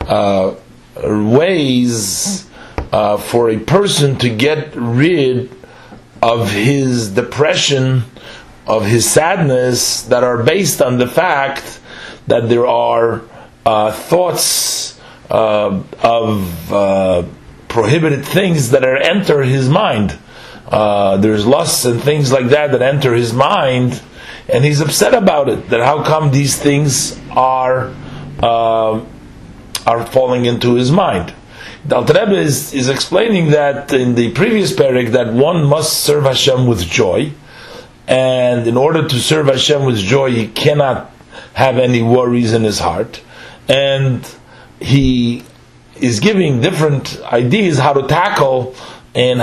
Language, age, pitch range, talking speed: English, 40-59, 120-145 Hz, 125 wpm